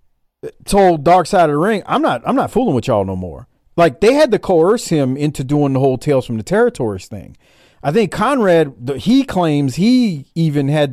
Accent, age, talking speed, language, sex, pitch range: American, 40-59, 210 wpm, English, male, 135-190 Hz